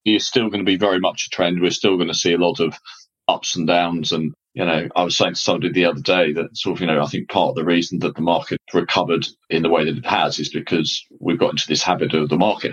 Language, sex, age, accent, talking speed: English, male, 30-49, British, 290 wpm